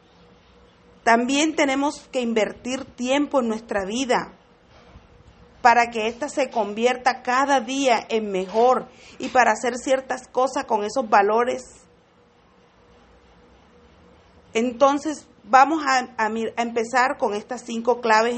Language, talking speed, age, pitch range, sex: English, 115 wpm, 40-59, 225-265 Hz, female